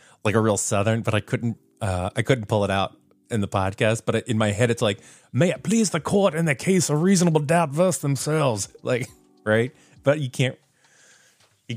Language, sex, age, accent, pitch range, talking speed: English, male, 30-49, American, 100-120 Hz, 210 wpm